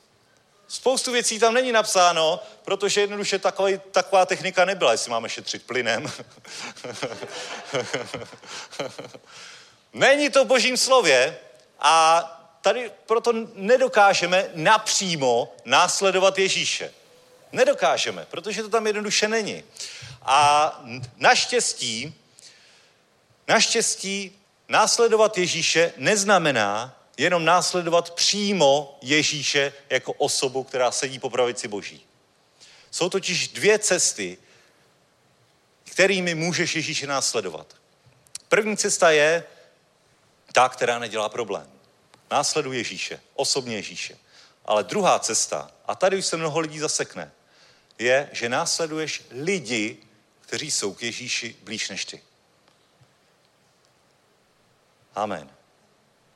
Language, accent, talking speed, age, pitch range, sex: Czech, native, 95 wpm, 40-59, 150-210 Hz, male